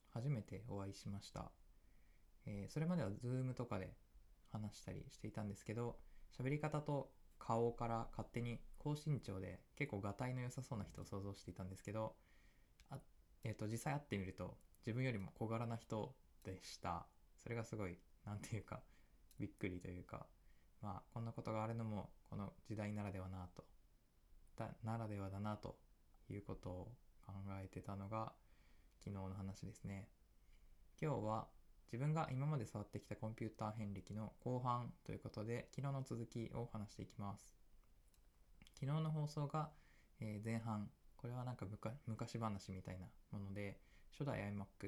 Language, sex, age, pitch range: Japanese, male, 20-39, 95-120 Hz